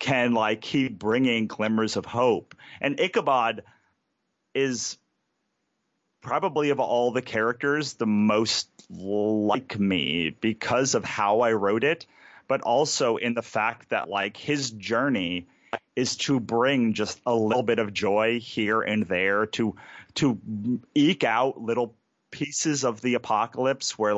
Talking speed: 140 wpm